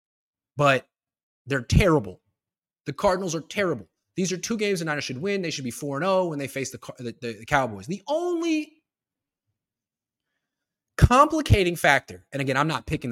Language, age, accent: English, 20-39, American